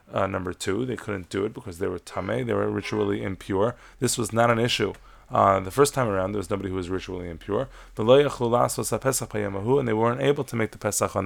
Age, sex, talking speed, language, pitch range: 20-39, male, 220 wpm, English, 100-125 Hz